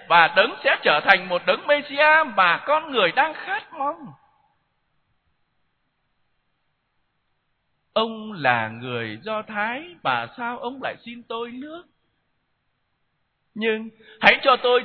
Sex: male